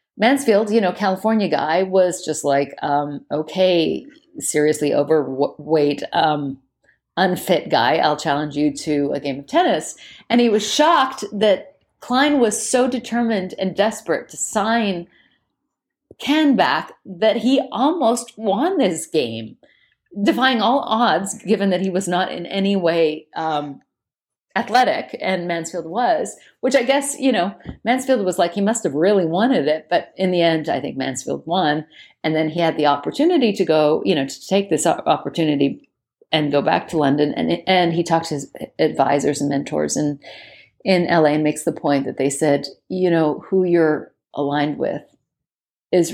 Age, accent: 40-59, American